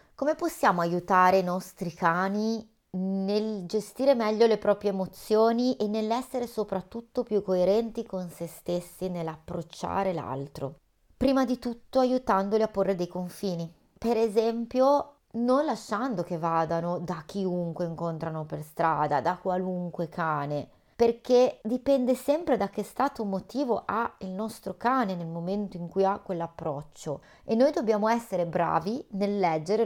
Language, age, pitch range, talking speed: Italian, 30-49, 175-235 Hz, 135 wpm